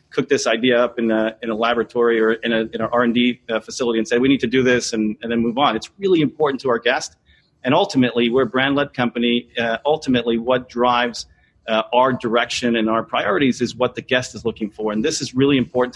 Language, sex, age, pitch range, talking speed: English, male, 40-59, 115-125 Hz, 235 wpm